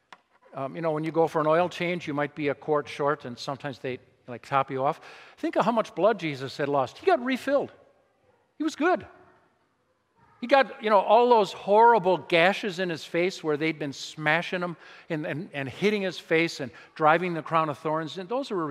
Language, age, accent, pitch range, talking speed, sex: English, 50-69, American, 145-210 Hz, 220 wpm, male